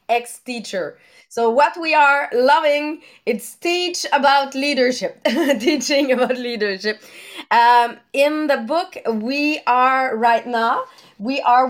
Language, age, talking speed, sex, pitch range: English, 30-49, 120 wpm, female, 240-305 Hz